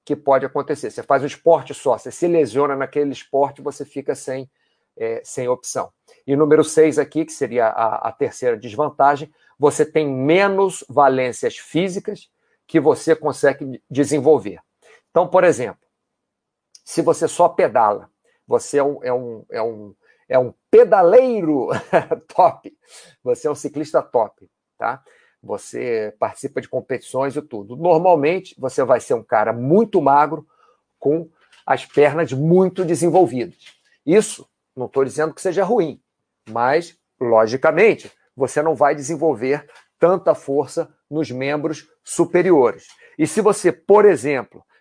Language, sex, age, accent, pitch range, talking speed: Portuguese, male, 50-69, Brazilian, 135-170 Hz, 140 wpm